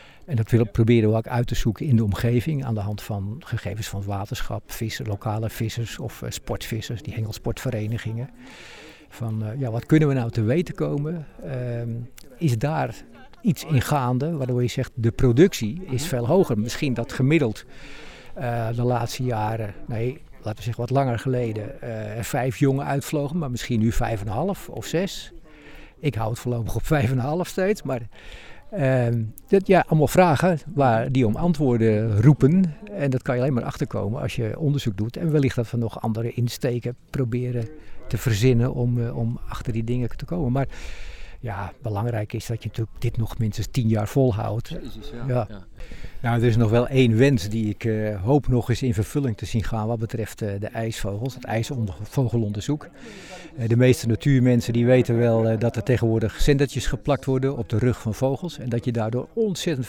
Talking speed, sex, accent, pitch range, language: 190 wpm, male, Dutch, 115-135 Hz, Dutch